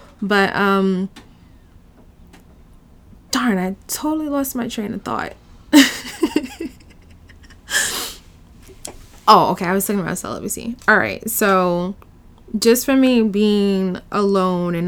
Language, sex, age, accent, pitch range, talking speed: English, female, 20-39, American, 165-195 Hz, 105 wpm